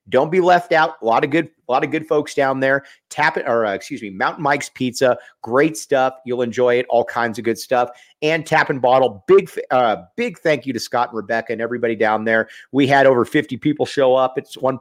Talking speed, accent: 245 wpm, American